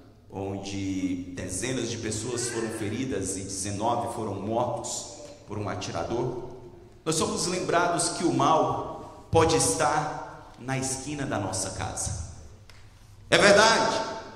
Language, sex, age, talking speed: English, male, 40-59, 115 wpm